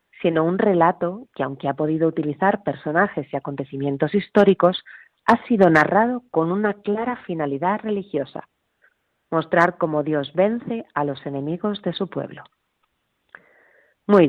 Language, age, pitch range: Spanish, 40-59, 155-200 Hz